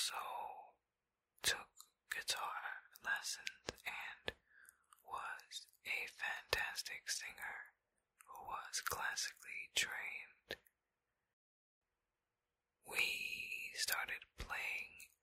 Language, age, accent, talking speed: English, 20-39, American, 60 wpm